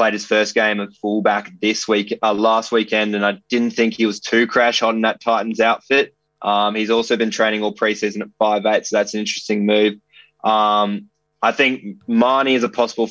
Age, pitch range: 20-39, 105-120 Hz